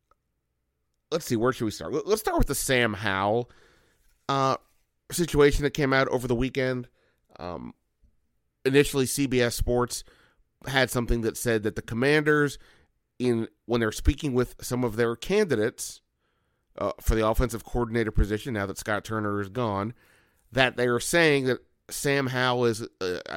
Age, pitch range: 30-49, 105-130 Hz